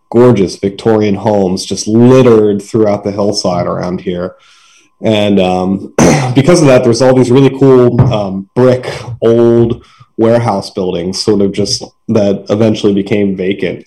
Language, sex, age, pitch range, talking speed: English, male, 20-39, 100-115 Hz, 140 wpm